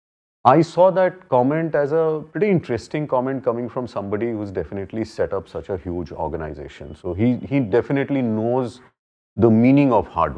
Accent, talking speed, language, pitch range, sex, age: Indian, 170 wpm, English, 100-140 Hz, male, 40-59